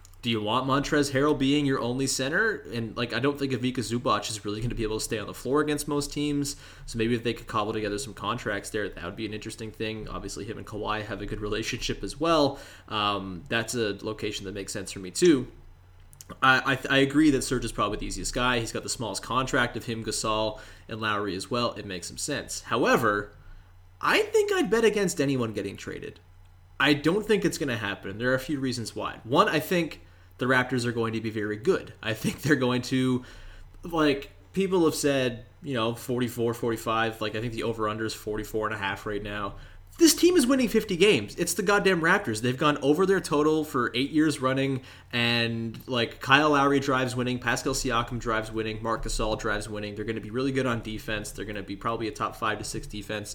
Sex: male